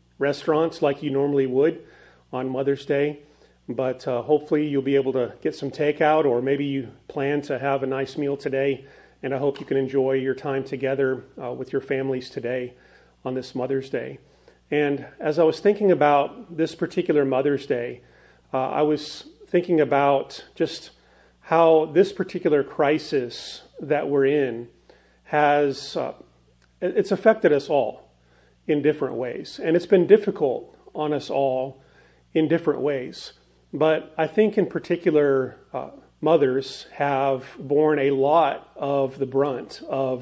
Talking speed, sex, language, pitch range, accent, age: 155 wpm, male, English, 135-155 Hz, American, 40-59